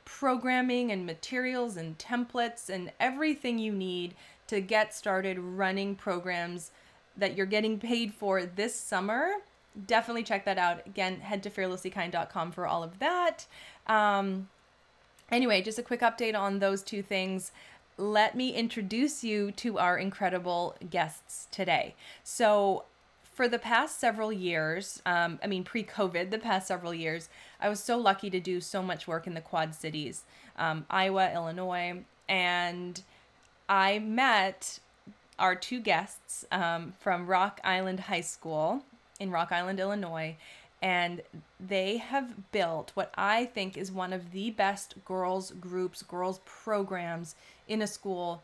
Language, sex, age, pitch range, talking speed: English, female, 20-39, 180-220 Hz, 145 wpm